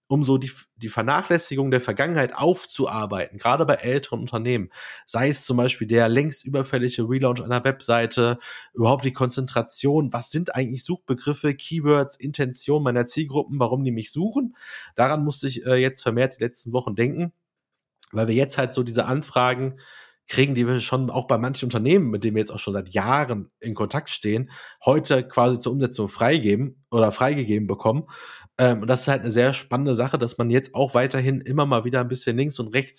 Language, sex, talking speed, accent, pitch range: German, male, 185 wpm, German, 120-140 Hz